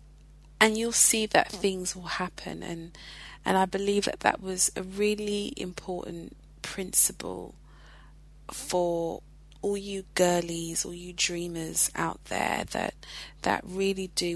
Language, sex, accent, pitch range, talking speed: English, female, British, 170-200 Hz, 130 wpm